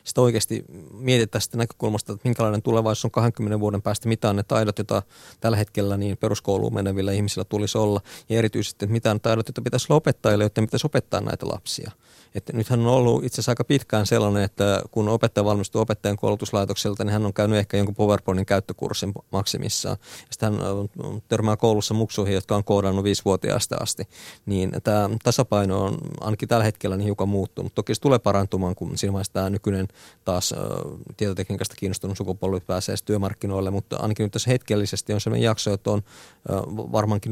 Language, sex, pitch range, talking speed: Finnish, male, 100-115 Hz, 175 wpm